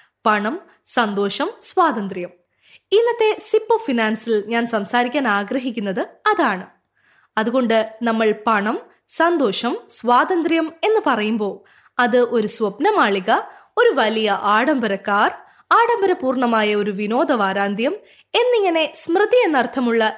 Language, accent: Malayalam, native